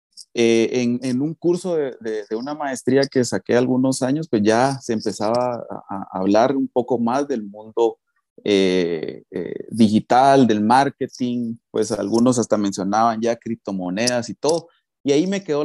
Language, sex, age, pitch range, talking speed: Spanish, male, 30-49, 110-145 Hz, 165 wpm